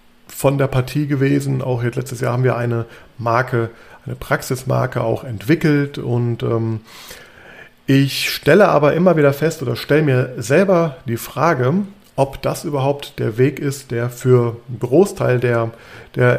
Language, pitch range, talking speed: German, 120-145 Hz, 155 wpm